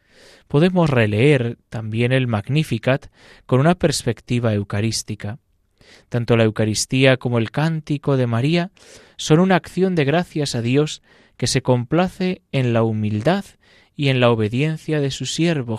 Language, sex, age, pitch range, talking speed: Spanish, male, 20-39, 110-150 Hz, 140 wpm